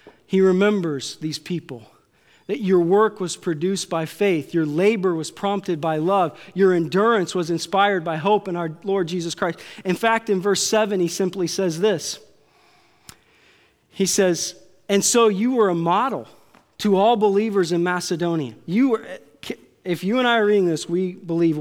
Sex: male